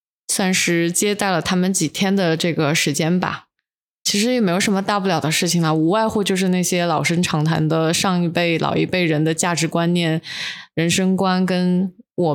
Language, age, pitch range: Chinese, 20-39, 160-190 Hz